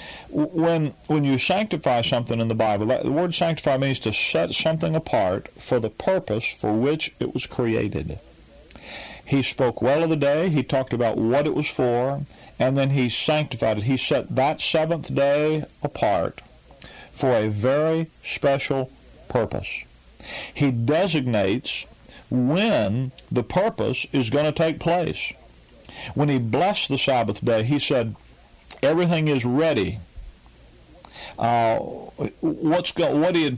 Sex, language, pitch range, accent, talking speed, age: male, English, 120-150 Hz, American, 145 wpm, 40-59